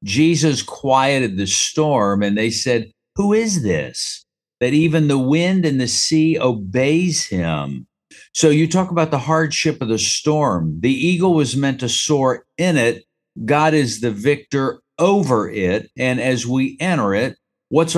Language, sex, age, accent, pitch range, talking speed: English, male, 50-69, American, 115-155 Hz, 160 wpm